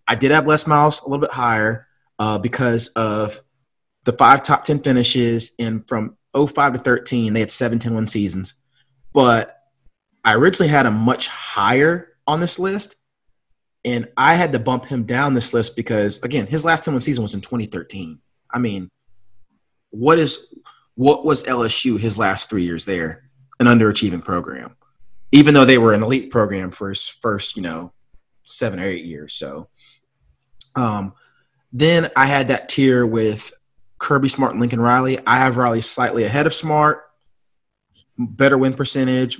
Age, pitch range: 30-49, 110-135 Hz